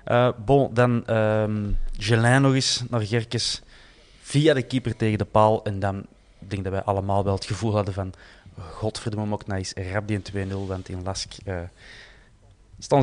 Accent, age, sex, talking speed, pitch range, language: Dutch, 20-39, male, 185 wpm, 100-115 Hz, Dutch